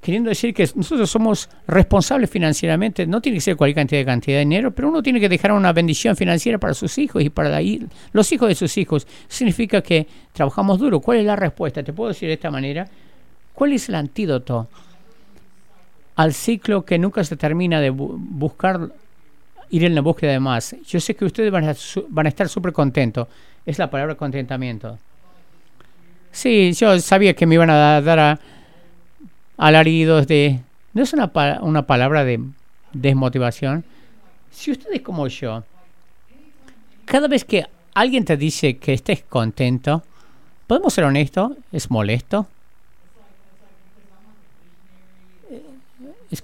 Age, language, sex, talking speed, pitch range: 50-69, English, male, 160 wpm, 150-210 Hz